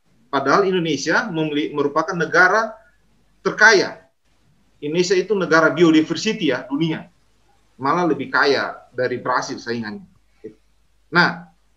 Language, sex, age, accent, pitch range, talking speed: Indonesian, male, 30-49, native, 160-240 Hz, 95 wpm